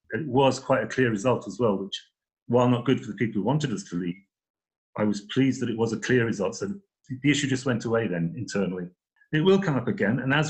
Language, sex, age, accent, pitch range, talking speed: English, male, 40-59, British, 105-150 Hz, 250 wpm